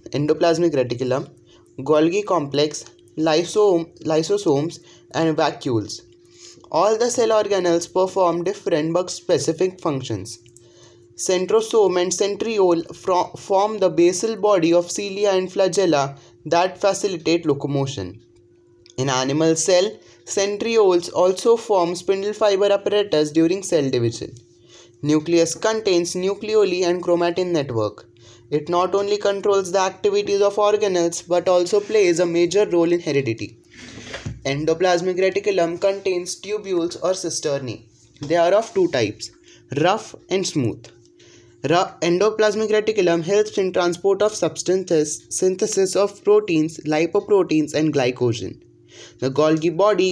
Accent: Indian